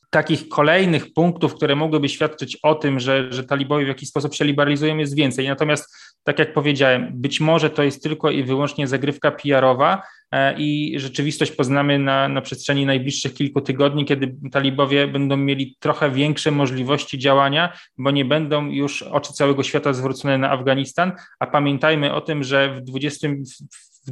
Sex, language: male, Polish